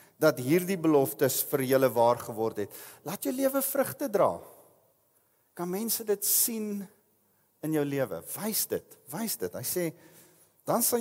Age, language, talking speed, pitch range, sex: 40-59, English, 155 wpm, 125-185 Hz, male